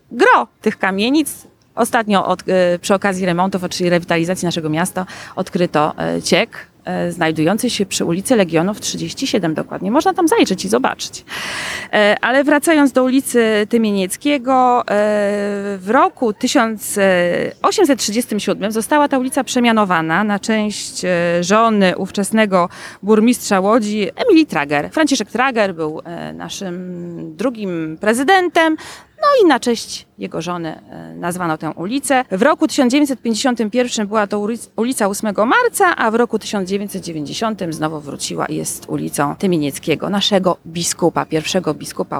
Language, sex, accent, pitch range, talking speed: Polish, female, native, 180-250 Hz, 120 wpm